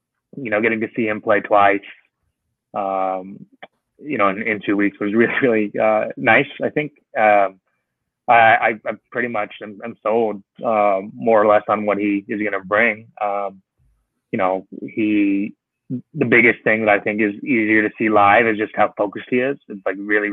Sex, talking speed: male, 195 wpm